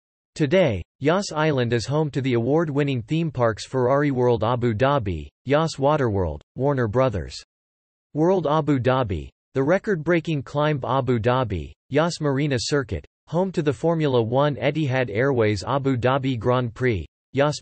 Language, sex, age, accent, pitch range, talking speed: English, male, 40-59, American, 115-145 Hz, 140 wpm